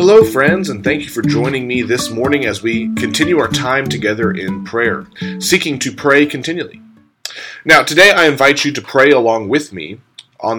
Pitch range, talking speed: 115-170 Hz, 185 wpm